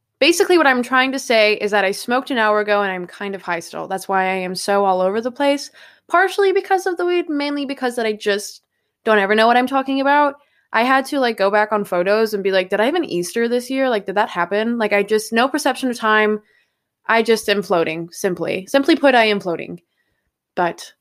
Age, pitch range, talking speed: 20-39, 200-270 Hz, 245 wpm